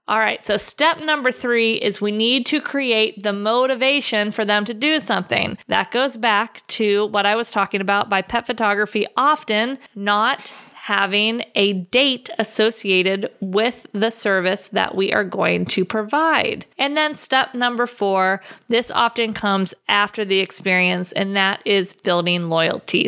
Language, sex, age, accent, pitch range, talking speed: English, female, 40-59, American, 200-240 Hz, 160 wpm